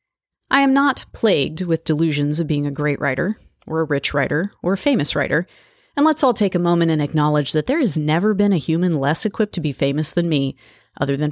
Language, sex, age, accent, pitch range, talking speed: English, female, 30-49, American, 145-180 Hz, 230 wpm